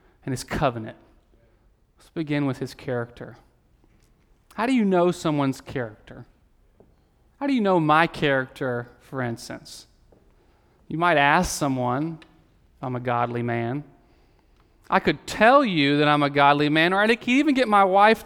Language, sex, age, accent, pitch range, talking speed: English, male, 40-59, American, 130-175 Hz, 150 wpm